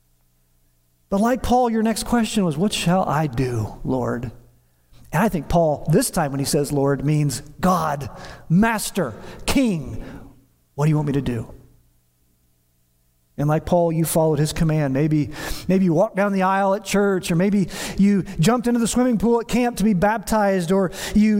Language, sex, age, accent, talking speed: English, male, 40-59, American, 180 wpm